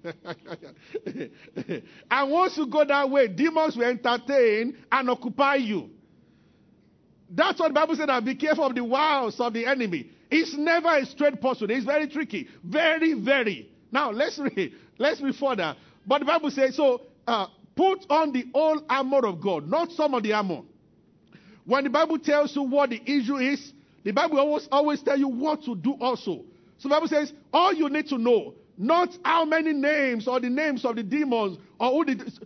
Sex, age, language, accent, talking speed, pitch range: male, 50-69, English, Nigerian, 185 wpm, 230-300 Hz